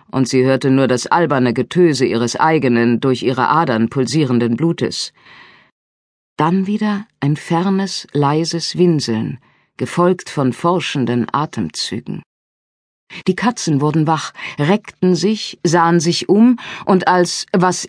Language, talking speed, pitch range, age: German, 120 wpm, 135-190 Hz, 50-69